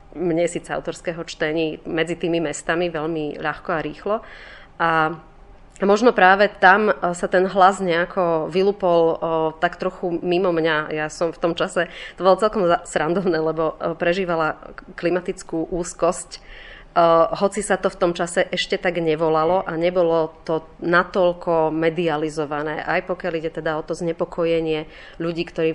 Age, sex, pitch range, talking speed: 30-49, female, 160-180 Hz, 140 wpm